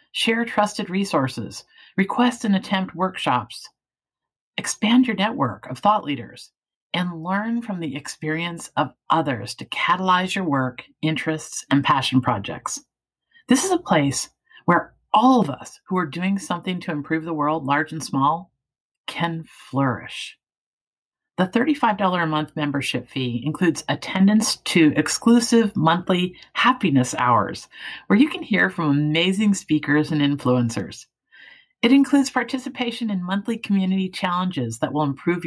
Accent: American